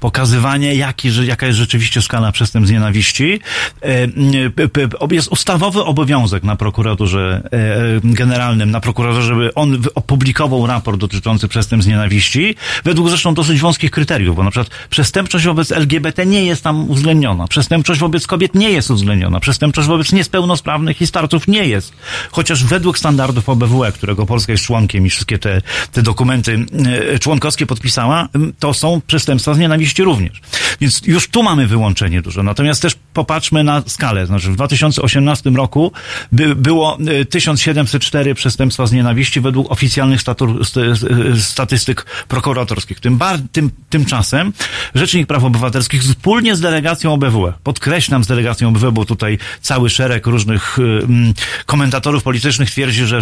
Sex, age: male, 40-59